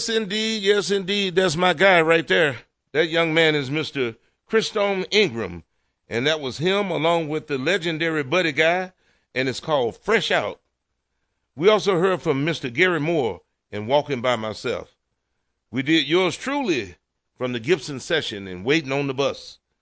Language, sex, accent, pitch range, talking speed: English, male, American, 140-185 Hz, 165 wpm